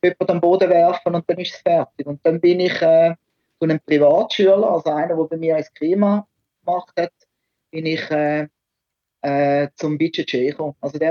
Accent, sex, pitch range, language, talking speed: Austrian, male, 145-180 Hz, English, 190 wpm